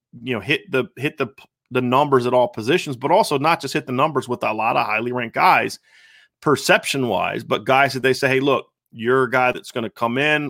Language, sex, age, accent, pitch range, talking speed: English, male, 30-49, American, 115-135 Hz, 240 wpm